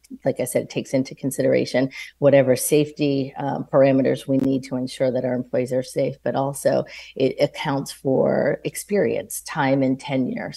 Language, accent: English, American